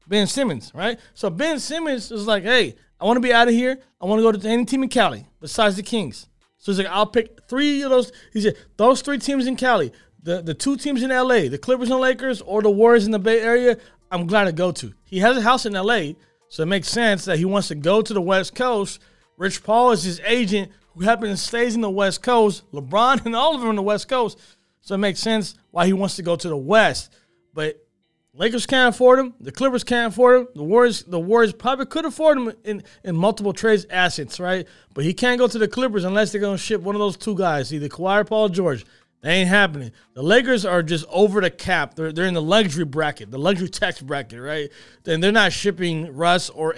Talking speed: 250 wpm